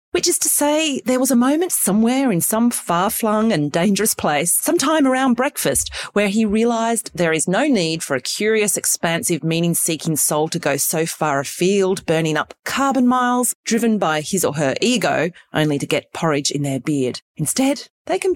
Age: 30-49